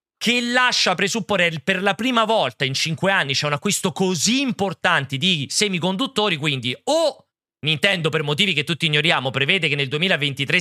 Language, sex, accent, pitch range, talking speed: Italian, male, native, 140-200 Hz, 165 wpm